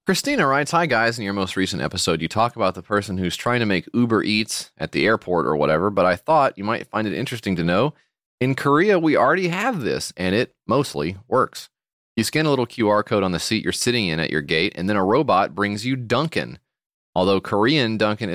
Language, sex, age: English, male, 30-49